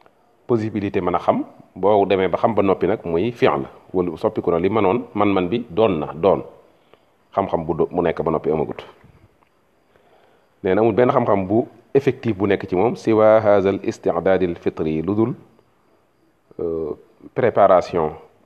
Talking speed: 80 wpm